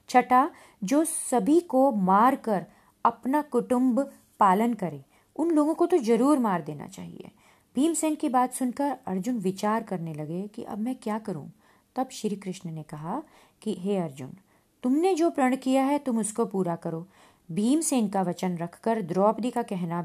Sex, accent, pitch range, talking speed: female, native, 185-270 Hz, 170 wpm